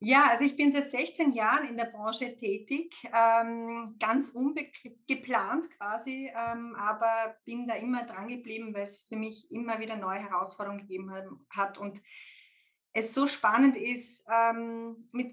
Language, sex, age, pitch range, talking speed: German, female, 20-39, 205-245 Hz, 140 wpm